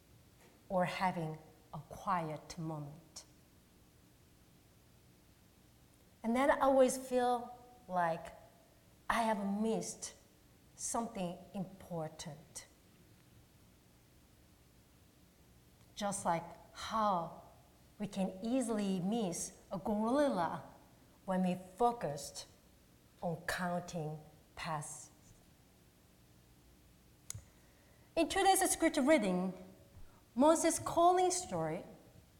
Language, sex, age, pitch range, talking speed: English, female, 40-59, 160-240 Hz, 70 wpm